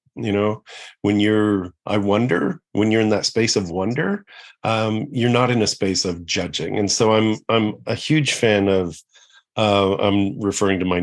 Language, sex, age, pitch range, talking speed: English, male, 40-59, 95-115 Hz, 190 wpm